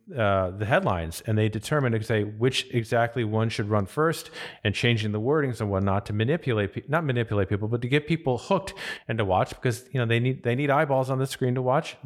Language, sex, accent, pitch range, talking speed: English, male, American, 110-150 Hz, 235 wpm